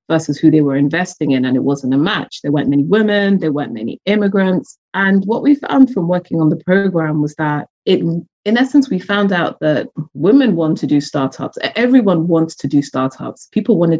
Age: 30-49